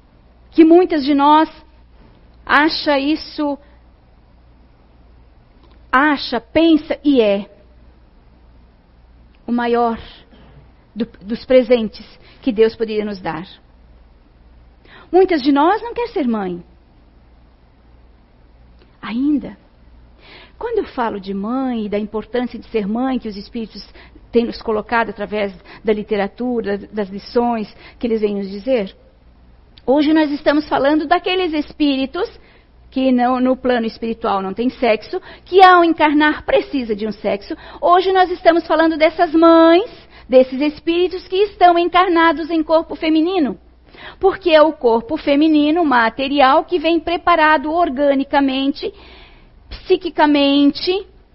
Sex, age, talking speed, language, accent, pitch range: female, 40-59, 120 wpm, Portuguese, Brazilian, 195-310 Hz